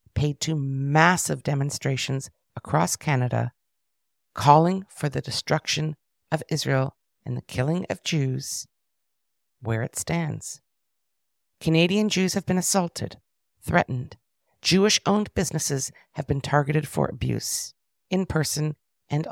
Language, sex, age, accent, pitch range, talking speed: English, female, 50-69, American, 120-160 Hz, 115 wpm